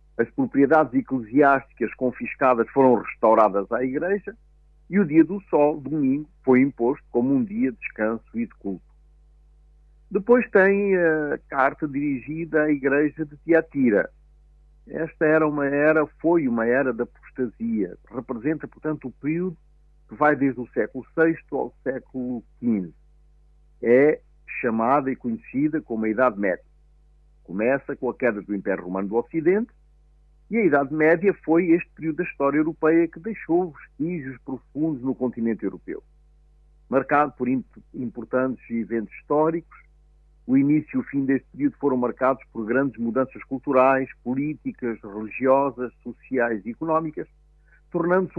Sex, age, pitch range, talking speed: male, 50-69, 115-155 Hz, 140 wpm